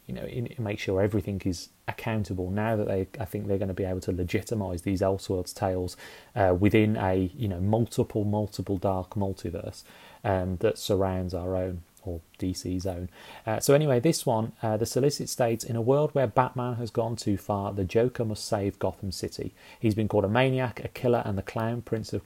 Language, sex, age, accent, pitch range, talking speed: English, male, 30-49, British, 100-120 Hz, 200 wpm